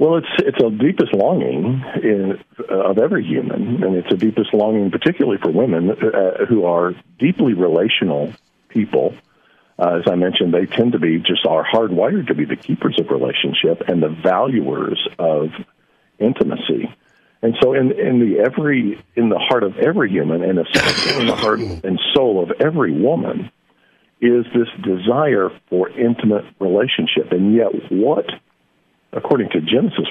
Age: 50-69